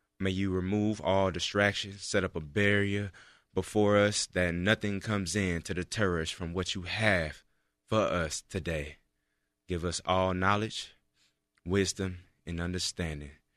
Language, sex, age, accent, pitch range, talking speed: English, male, 20-39, American, 90-110 Hz, 140 wpm